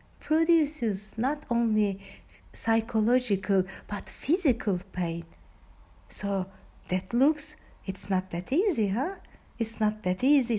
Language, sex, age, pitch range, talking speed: Turkish, female, 50-69, 205-265 Hz, 110 wpm